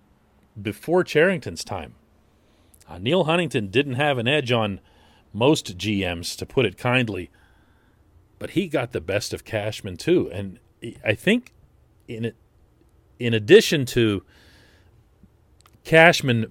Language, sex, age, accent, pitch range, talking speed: English, male, 40-59, American, 95-120 Hz, 125 wpm